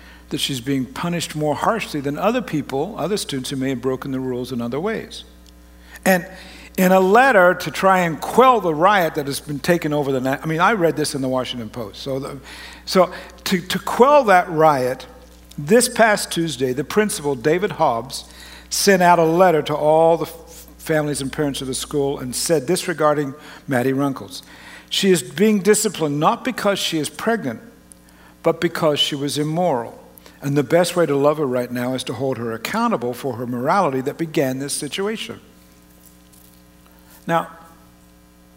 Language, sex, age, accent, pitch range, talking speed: English, male, 60-79, American, 130-190 Hz, 180 wpm